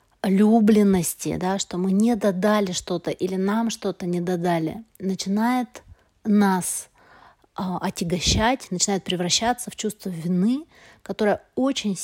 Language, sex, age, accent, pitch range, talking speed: Russian, female, 30-49, native, 180-215 Hz, 110 wpm